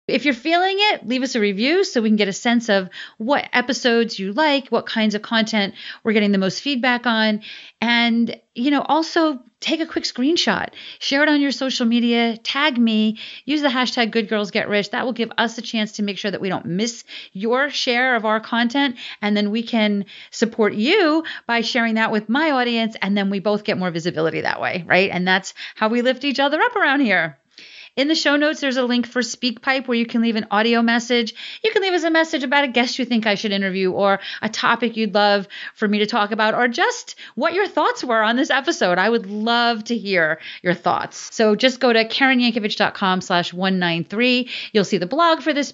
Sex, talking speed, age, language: female, 225 wpm, 40-59, English